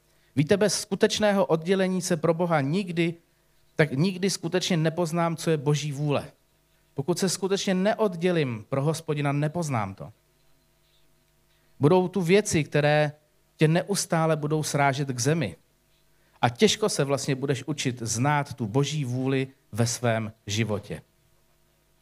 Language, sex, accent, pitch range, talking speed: Czech, male, native, 130-170 Hz, 130 wpm